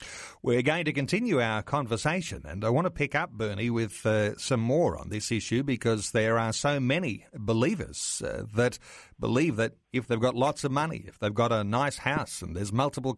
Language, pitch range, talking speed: English, 115-150 Hz, 205 wpm